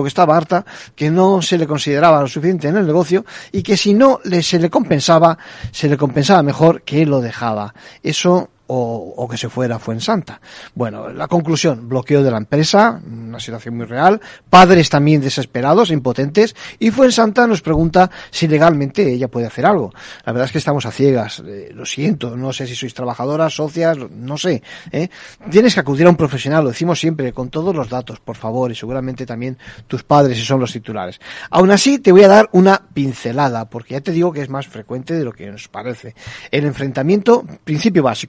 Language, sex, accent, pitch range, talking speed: Spanish, male, Spanish, 125-175 Hz, 200 wpm